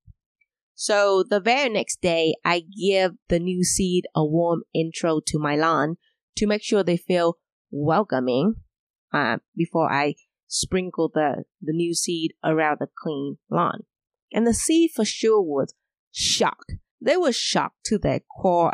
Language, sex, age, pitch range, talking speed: English, female, 20-39, 165-220 Hz, 150 wpm